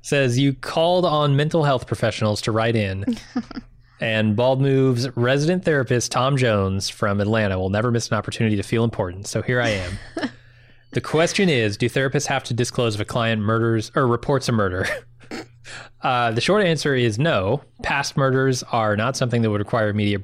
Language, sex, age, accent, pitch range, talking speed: English, male, 20-39, American, 110-130 Hz, 185 wpm